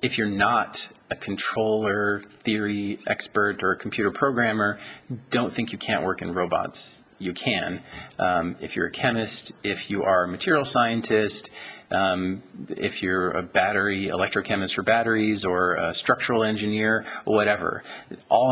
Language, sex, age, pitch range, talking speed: English, male, 40-59, 95-110 Hz, 145 wpm